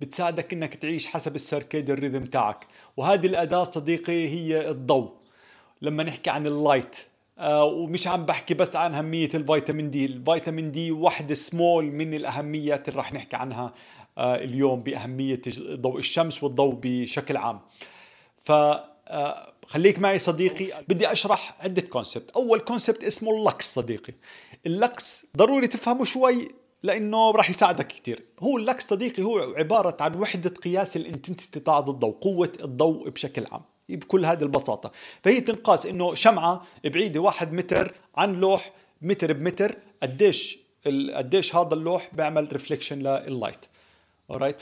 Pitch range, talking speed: 140-190 Hz, 135 wpm